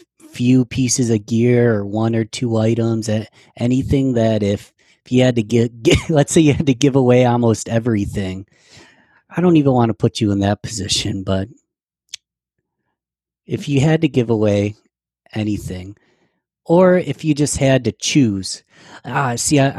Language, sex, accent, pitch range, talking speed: English, male, American, 100-125 Hz, 165 wpm